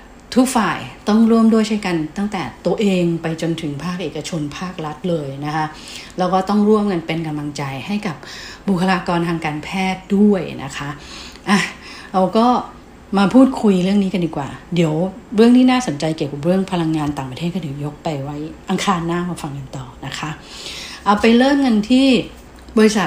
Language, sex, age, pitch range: English, female, 60-79, 155-200 Hz